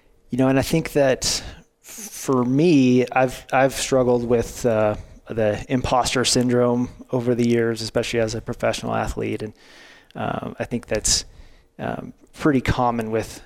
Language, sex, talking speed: English, male, 145 wpm